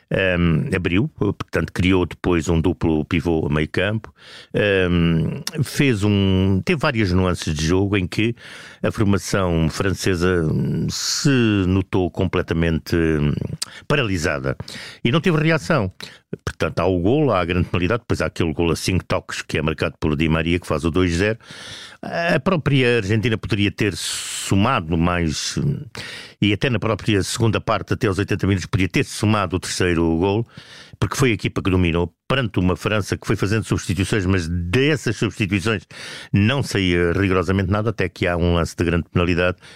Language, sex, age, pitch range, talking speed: Portuguese, male, 50-69, 90-115 Hz, 160 wpm